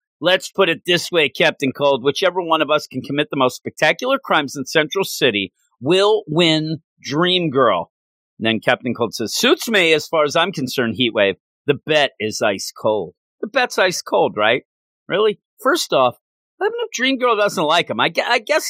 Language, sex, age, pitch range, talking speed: English, male, 40-59, 135-195 Hz, 195 wpm